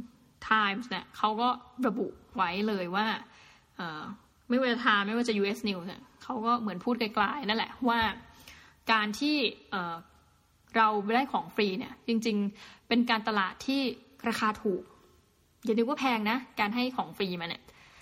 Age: 20-39